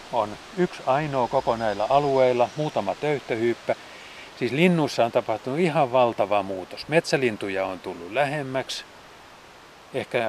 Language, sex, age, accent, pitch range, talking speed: Finnish, male, 30-49, native, 115-150 Hz, 110 wpm